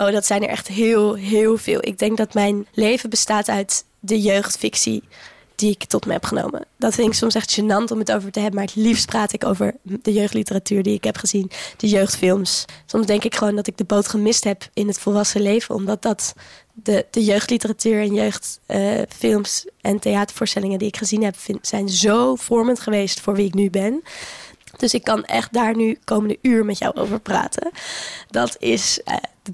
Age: 20-39